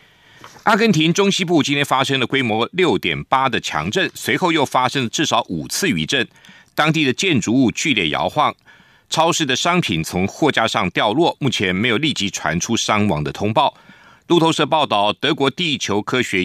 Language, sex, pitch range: Chinese, male, 115-155 Hz